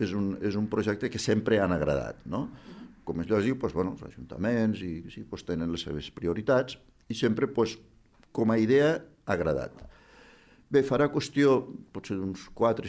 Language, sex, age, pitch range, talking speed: Spanish, male, 60-79, 85-115 Hz, 170 wpm